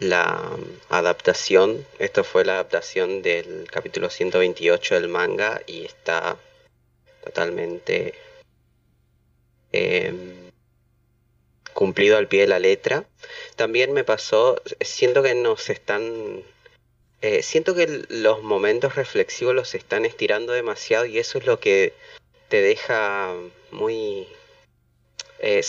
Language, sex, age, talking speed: Spanish, male, 30-49, 110 wpm